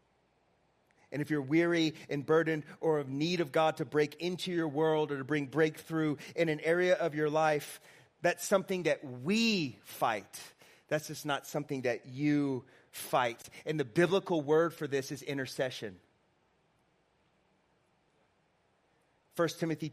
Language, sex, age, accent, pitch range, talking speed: English, male, 30-49, American, 155-195 Hz, 145 wpm